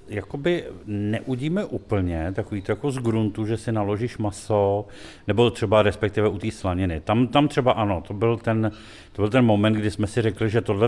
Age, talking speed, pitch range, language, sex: 50-69, 190 wpm, 95-115 Hz, Czech, male